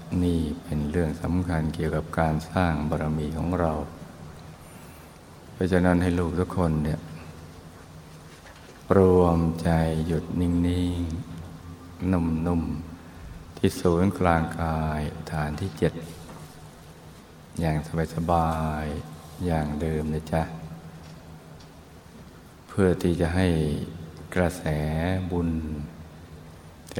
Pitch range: 80-85 Hz